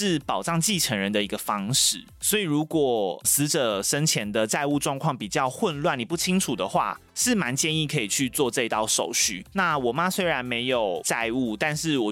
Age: 30-49